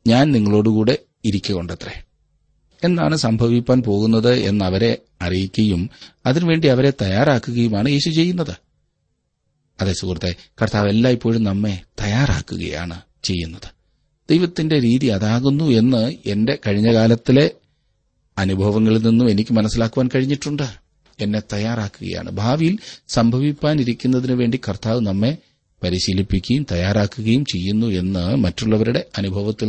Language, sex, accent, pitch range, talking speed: Malayalam, male, native, 105-130 Hz, 90 wpm